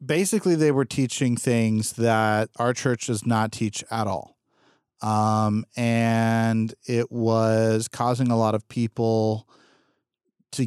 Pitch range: 110-130 Hz